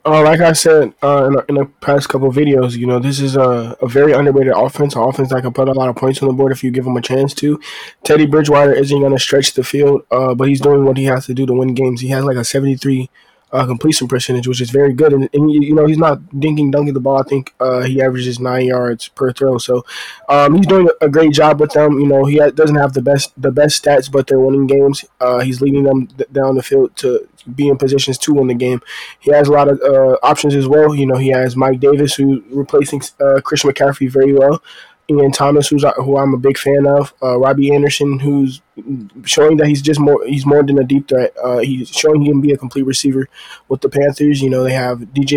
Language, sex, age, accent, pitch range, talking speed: English, male, 20-39, American, 130-145 Hz, 260 wpm